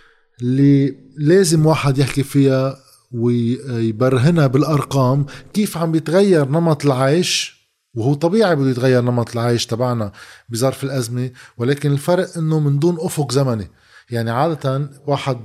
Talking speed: 120 wpm